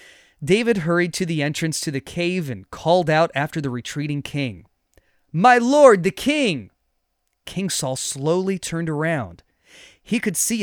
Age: 30-49